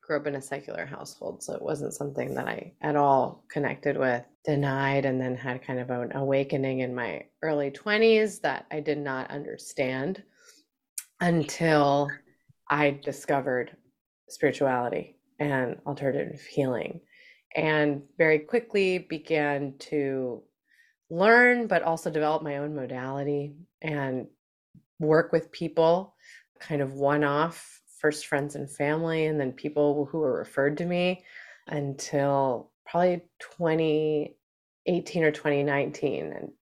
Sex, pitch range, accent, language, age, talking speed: female, 140-165 Hz, American, English, 20-39, 125 wpm